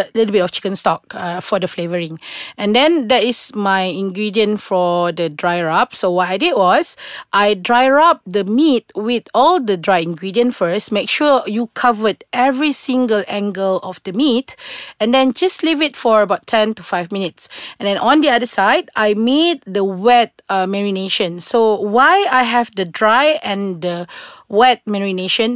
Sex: female